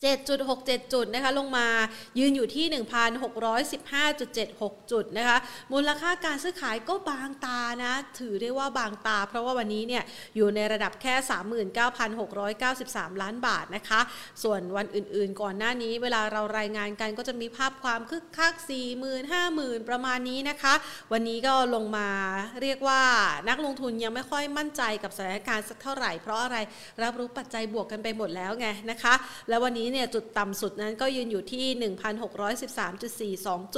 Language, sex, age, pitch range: Thai, female, 30-49, 220-280 Hz